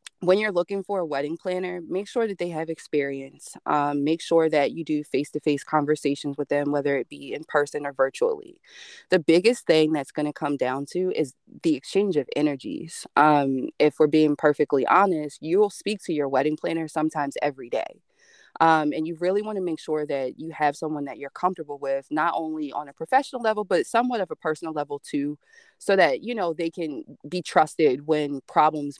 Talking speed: 205 wpm